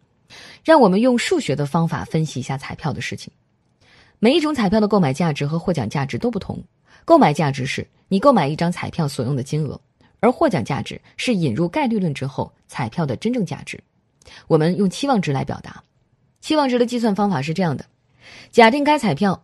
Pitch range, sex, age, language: 140-230 Hz, female, 20-39, Chinese